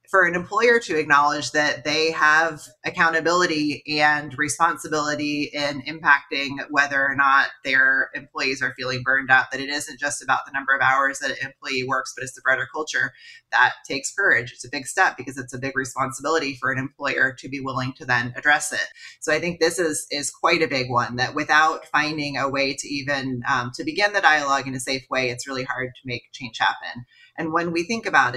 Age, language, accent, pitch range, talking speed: 30-49, English, American, 130-160 Hz, 210 wpm